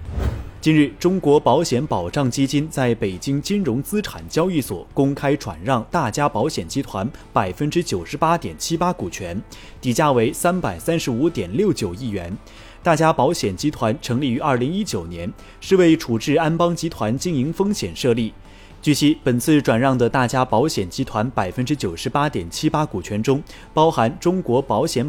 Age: 30-49